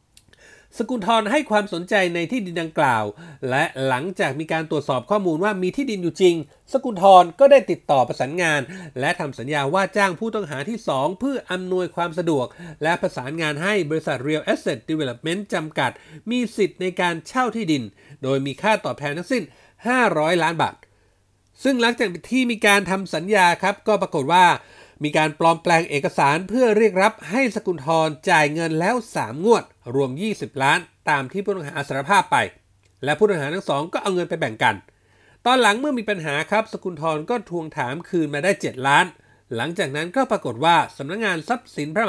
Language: Thai